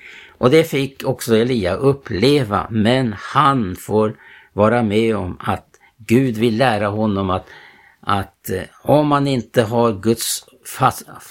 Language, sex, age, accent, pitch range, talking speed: Swedish, male, 60-79, Norwegian, 100-125 Hz, 135 wpm